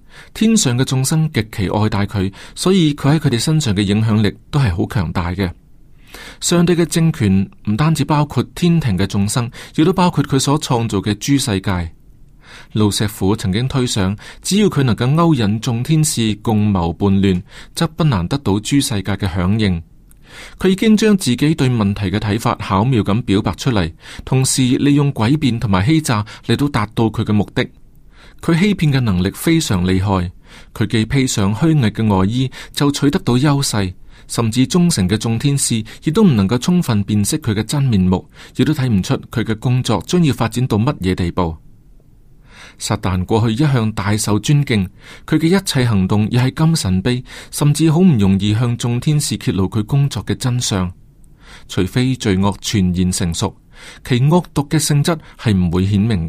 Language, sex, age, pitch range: Chinese, male, 30-49, 100-145 Hz